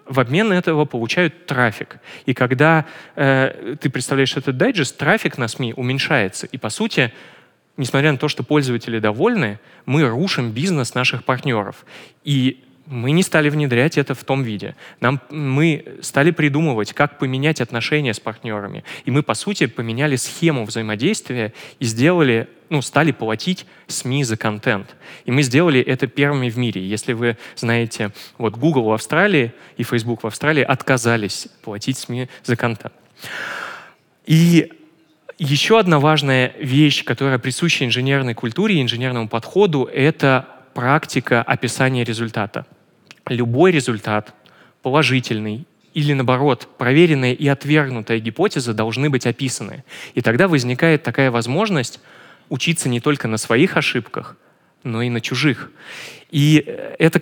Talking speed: 135 wpm